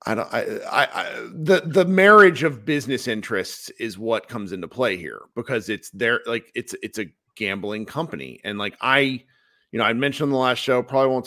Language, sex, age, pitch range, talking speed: English, male, 40-59, 115-180 Hz, 200 wpm